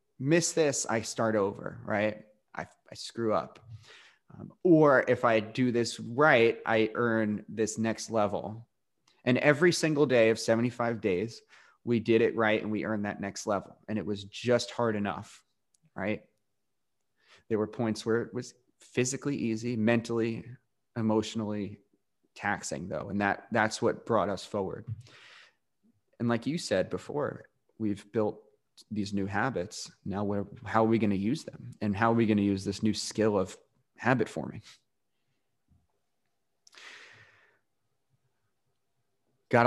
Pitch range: 105-125 Hz